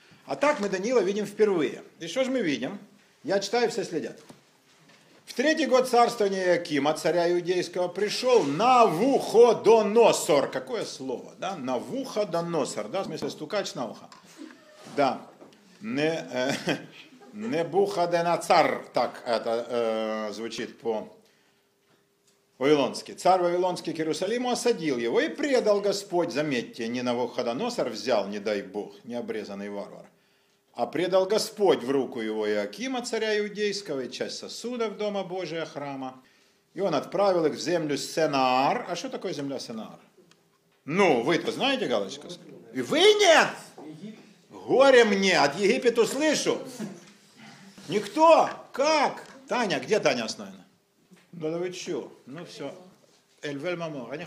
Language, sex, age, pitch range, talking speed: Russian, male, 50-69, 160-235 Hz, 130 wpm